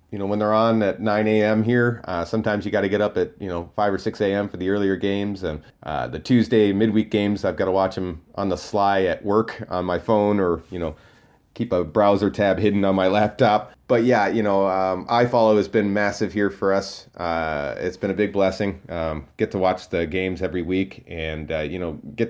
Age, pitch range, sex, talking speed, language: 30-49, 90-110 Hz, male, 235 wpm, English